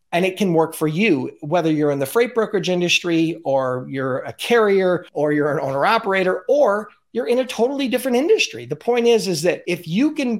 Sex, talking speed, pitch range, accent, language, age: male, 215 wpm, 150-210 Hz, American, English, 40-59